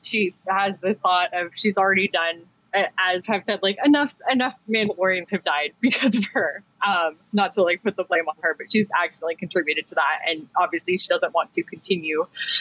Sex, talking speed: female, 200 wpm